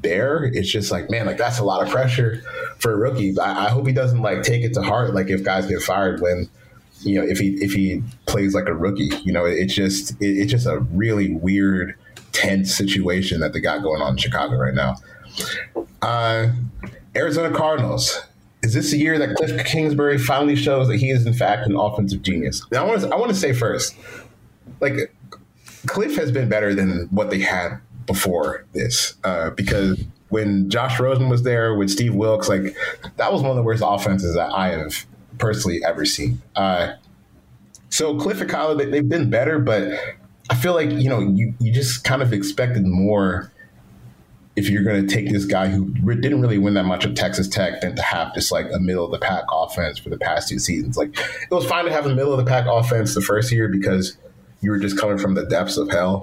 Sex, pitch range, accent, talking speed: male, 95-125 Hz, American, 215 wpm